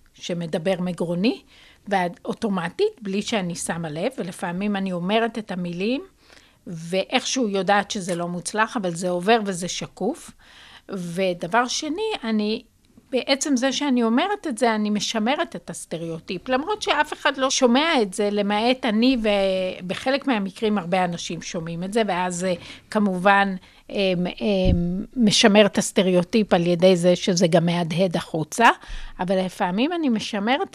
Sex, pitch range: female, 180-235 Hz